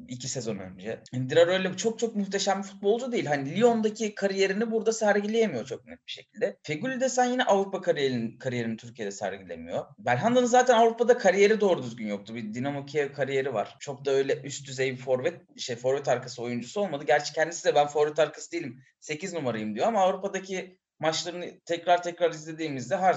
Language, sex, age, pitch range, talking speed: Turkish, male, 30-49, 140-225 Hz, 180 wpm